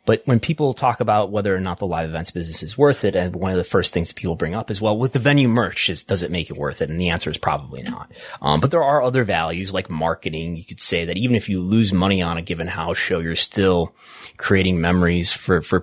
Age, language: 30-49, English